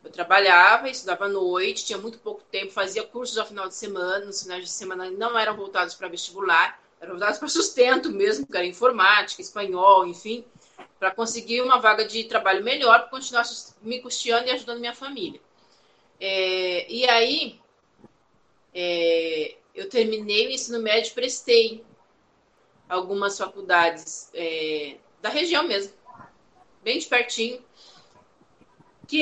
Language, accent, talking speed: Portuguese, Brazilian, 145 wpm